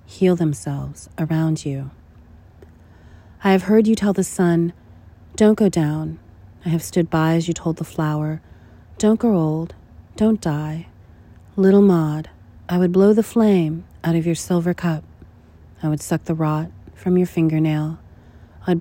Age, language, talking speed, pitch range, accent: 40-59, English, 155 wpm, 140-170 Hz, American